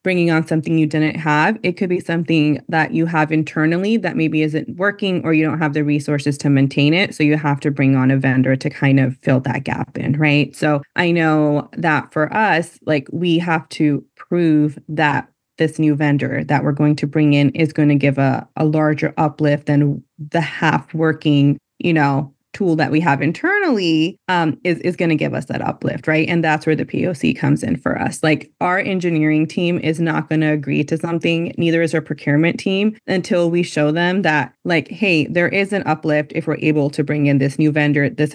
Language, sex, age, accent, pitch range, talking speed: English, female, 20-39, American, 145-165 Hz, 215 wpm